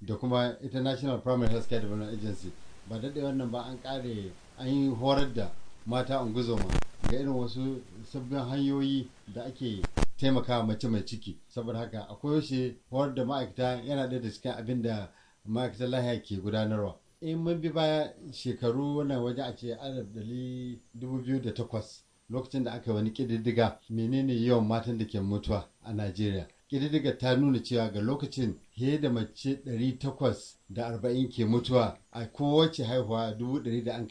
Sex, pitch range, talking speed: male, 110-135 Hz, 95 wpm